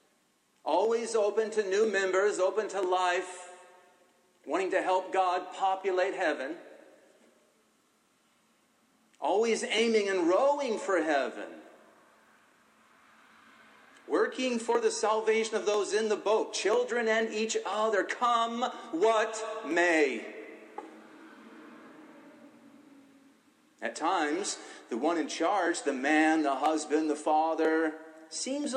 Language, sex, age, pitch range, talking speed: English, male, 40-59, 170-240 Hz, 100 wpm